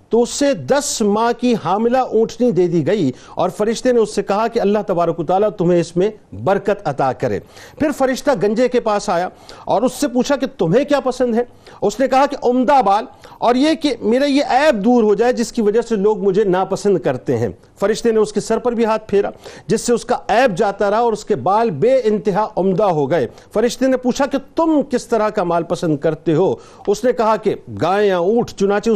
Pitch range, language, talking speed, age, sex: 195-250 Hz, Urdu, 215 wpm, 50-69, male